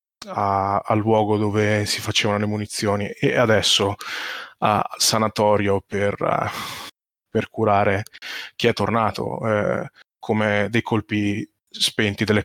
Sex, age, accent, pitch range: male, 20-39, native, 105-115 Hz